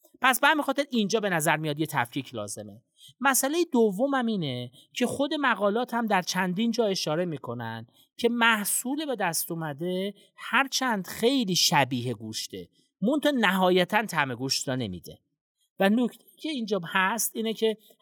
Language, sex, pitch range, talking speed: Persian, male, 150-225 Hz, 145 wpm